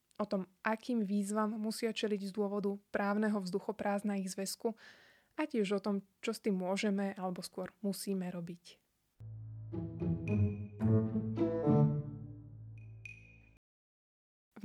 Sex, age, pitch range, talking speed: female, 20-39, 185-210 Hz, 100 wpm